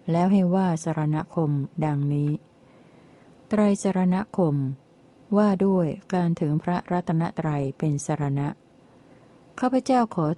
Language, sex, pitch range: Thai, female, 150-185 Hz